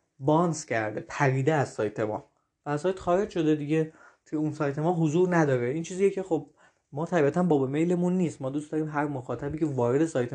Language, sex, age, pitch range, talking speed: Persian, male, 20-39, 130-180 Hz, 205 wpm